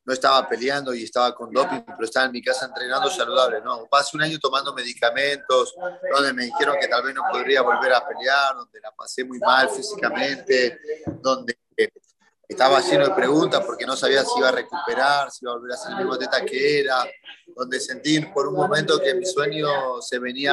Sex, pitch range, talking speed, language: male, 135-180 Hz, 200 wpm, Spanish